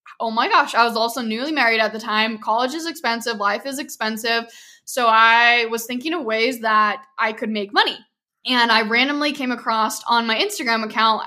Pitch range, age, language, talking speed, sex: 220-260 Hz, 10-29, English, 195 wpm, female